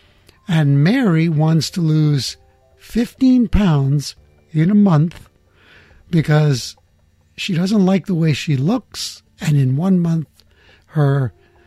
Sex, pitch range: male, 115-175 Hz